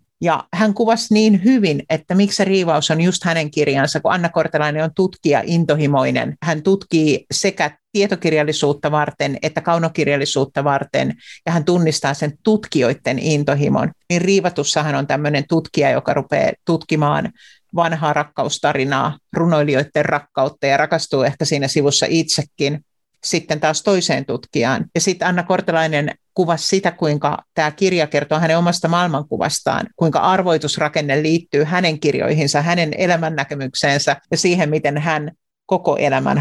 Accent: native